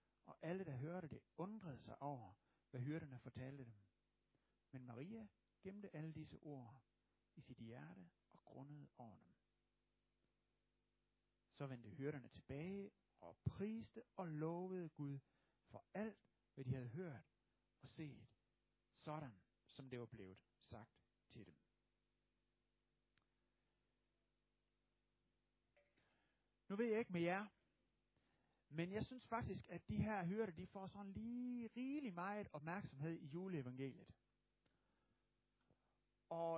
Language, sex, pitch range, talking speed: Danish, male, 125-200 Hz, 120 wpm